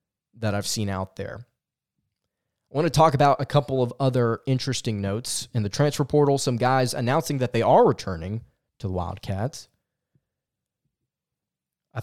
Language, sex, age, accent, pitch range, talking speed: English, male, 20-39, American, 115-140 Hz, 155 wpm